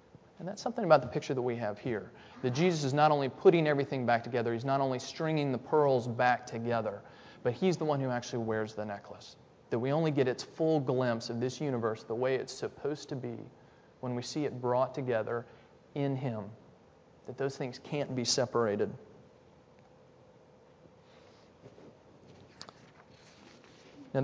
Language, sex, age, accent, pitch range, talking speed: English, male, 30-49, American, 115-150 Hz, 165 wpm